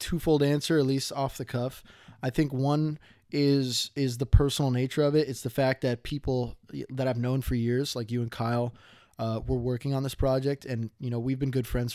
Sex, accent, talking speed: male, American, 220 wpm